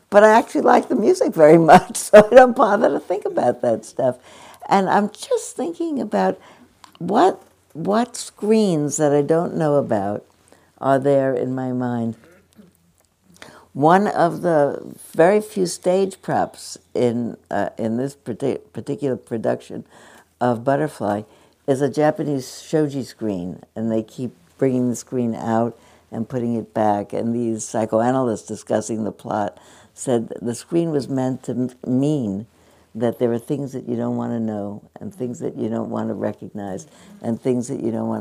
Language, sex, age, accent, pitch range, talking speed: English, female, 60-79, American, 110-145 Hz, 160 wpm